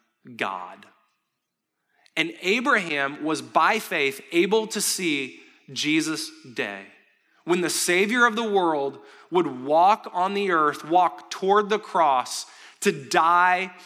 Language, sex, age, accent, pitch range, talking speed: English, male, 20-39, American, 165-225 Hz, 120 wpm